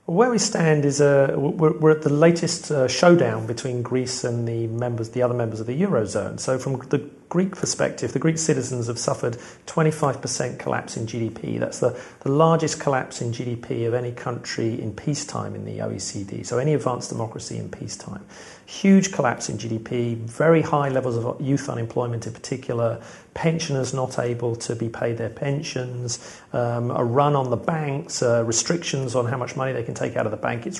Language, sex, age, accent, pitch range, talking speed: English, male, 40-59, British, 115-155 Hz, 190 wpm